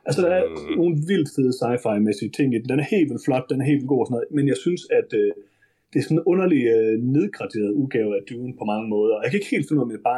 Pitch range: 115-160 Hz